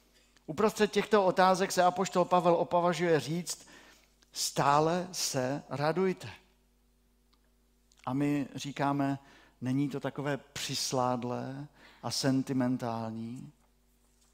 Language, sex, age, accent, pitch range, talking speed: Czech, male, 50-69, native, 125-160 Hz, 85 wpm